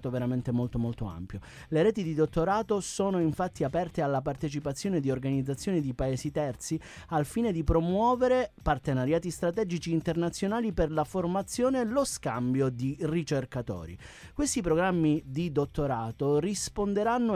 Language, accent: Italian, native